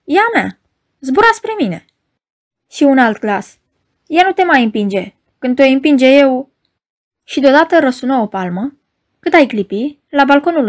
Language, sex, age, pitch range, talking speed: Romanian, female, 20-39, 220-295 Hz, 155 wpm